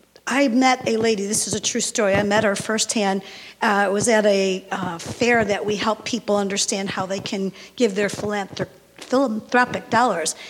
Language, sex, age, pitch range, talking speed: English, female, 50-69, 200-245 Hz, 185 wpm